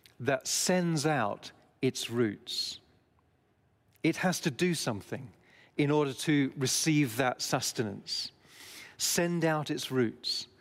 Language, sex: English, male